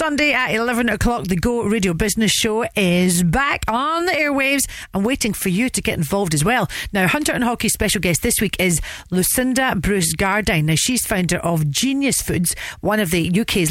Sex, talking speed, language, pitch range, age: female, 195 wpm, English, 175-235 Hz, 40-59